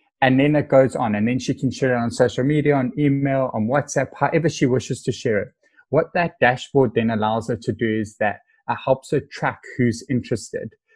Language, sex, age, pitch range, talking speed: English, male, 20-39, 110-140 Hz, 220 wpm